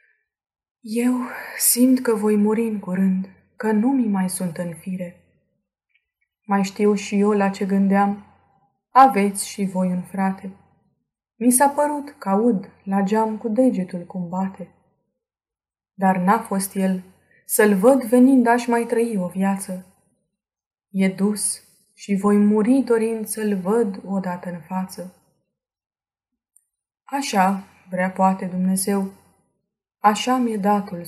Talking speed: 130 wpm